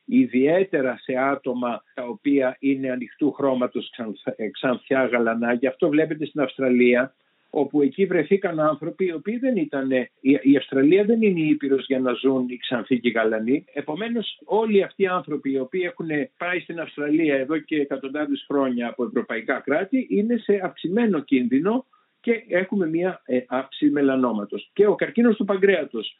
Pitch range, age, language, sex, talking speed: 135-210 Hz, 50-69, Greek, male, 150 wpm